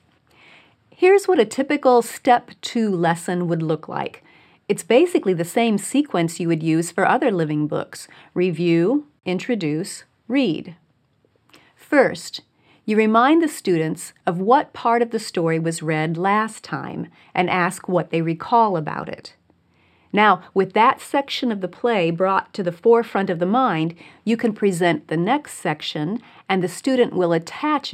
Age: 40-59